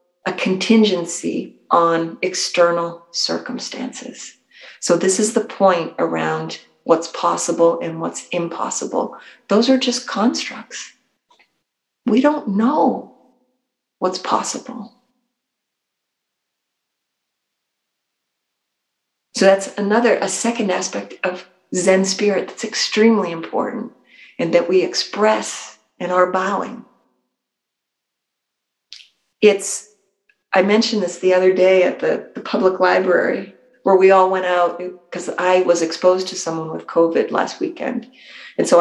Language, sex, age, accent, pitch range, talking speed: English, female, 50-69, American, 175-225 Hz, 115 wpm